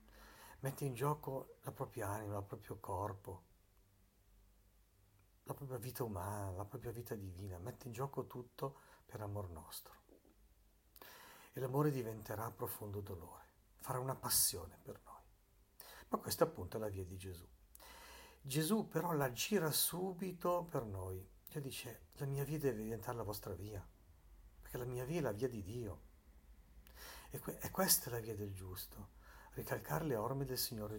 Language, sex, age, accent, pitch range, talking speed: Italian, male, 60-79, native, 100-130 Hz, 160 wpm